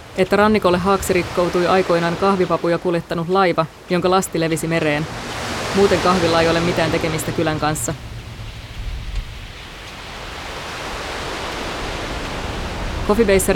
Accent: native